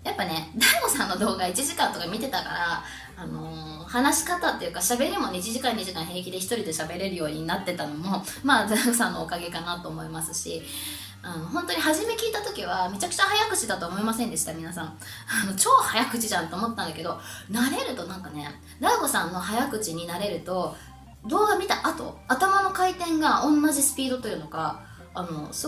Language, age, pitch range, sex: Japanese, 20-39, 170-265 Hz, female